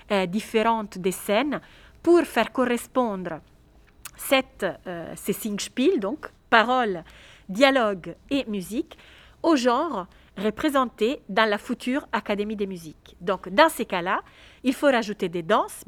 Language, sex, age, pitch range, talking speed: French, female, 40-59, 195-250 Hz, 130 wpm